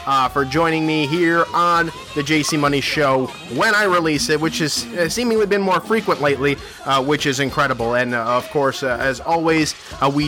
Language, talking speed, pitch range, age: English, 200 wpm, 135-185 Hz, 30-49